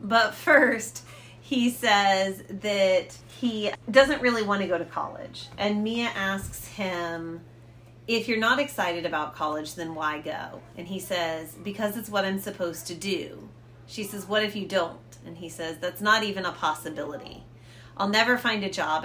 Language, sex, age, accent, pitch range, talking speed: English, female, 30-49, American, 165-215 Hz, 175 wpm